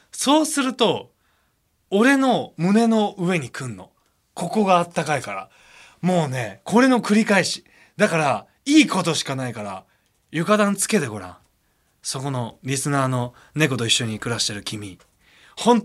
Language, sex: Japanese, male